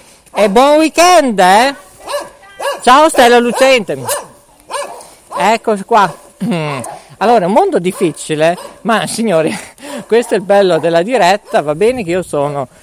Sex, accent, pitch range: male, native, 135-205 Hz